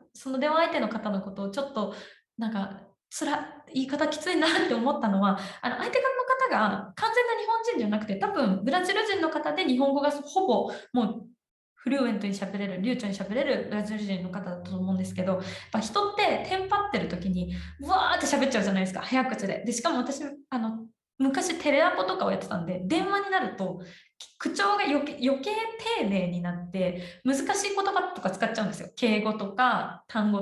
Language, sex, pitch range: Japanese, female, 200-300 Hz